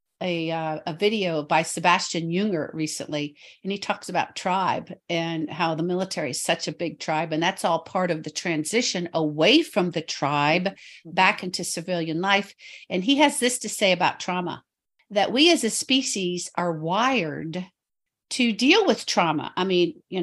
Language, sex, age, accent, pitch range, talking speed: English, female, 50-69, American, 165-210 Hz, 175 wpm